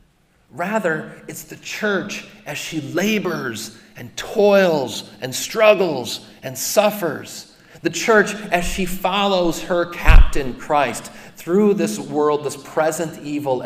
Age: 40-59